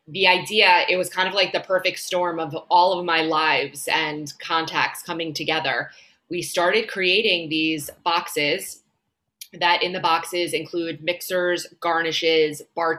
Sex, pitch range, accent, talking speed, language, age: female, 160-180 Hz, American, 150 wpm, English, 20-39